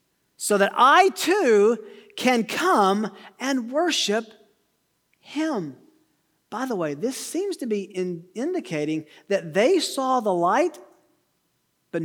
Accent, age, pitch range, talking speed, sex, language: American, 40-59, 180-250 Hz, 115 wpm, male, English